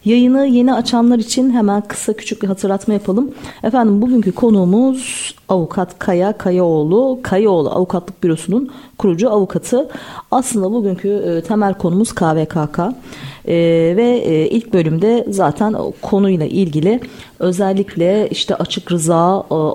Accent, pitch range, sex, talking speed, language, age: native, 180-235 Hz, female, 120 wpm, Turkish, 40-59